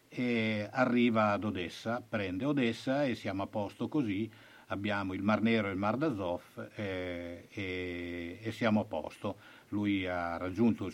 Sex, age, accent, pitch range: male, 60-79, native, 100-115 Hz